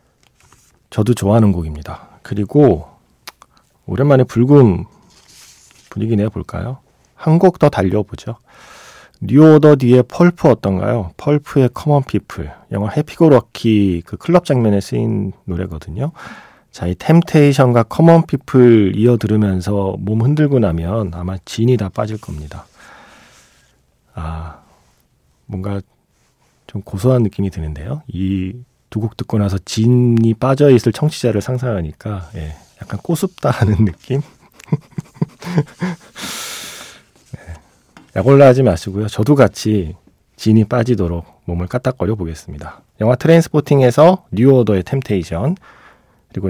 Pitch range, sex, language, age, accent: 95-140 Hz, male, Korean, 40-59, native